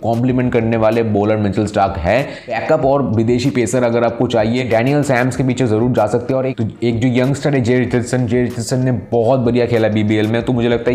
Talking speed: 185 wpm